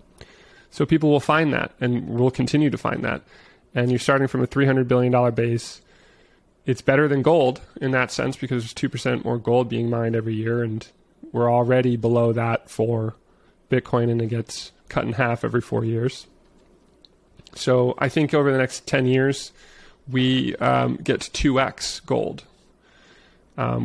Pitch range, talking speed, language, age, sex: 120-135 Hz, 160 wpm, English, 30-49, male